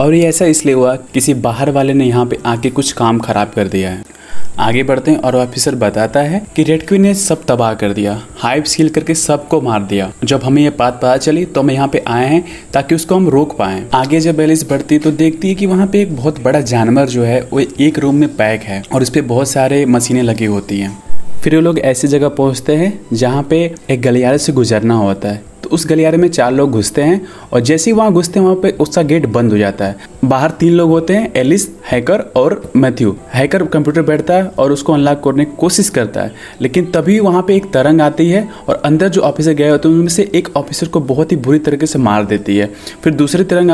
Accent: native